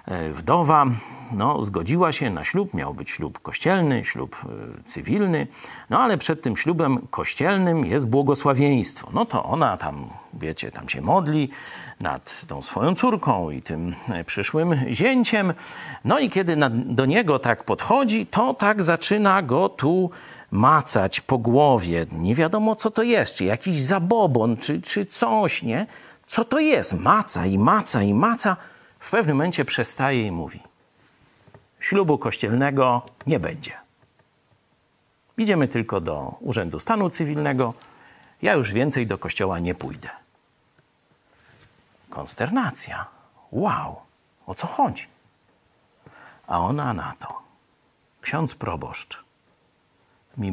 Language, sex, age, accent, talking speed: Polish, male, 50-69, native, 125 wpm